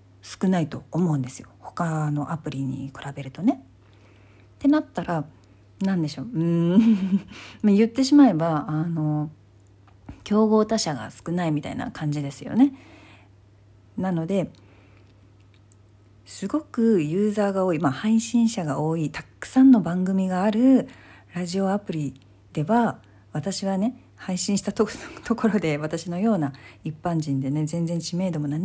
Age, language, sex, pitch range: 40-59, Japanese, female, 135-205 Hz